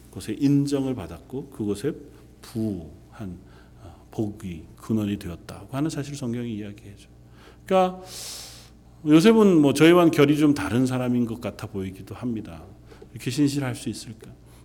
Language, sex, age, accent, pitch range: Korean, male, 40-59, native, 95-130 Hz